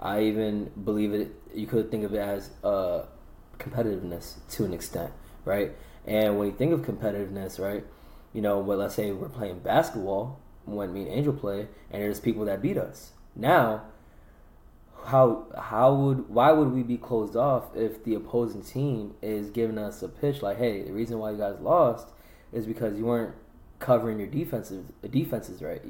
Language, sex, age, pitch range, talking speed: English, male, 20-39, 105-125 Hz, 180 wpm